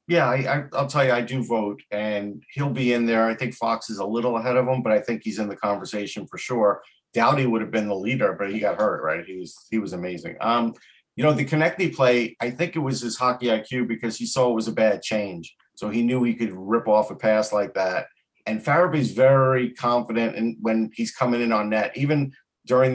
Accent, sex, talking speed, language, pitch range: American, male, 240 wpm, English, 105-125 Hz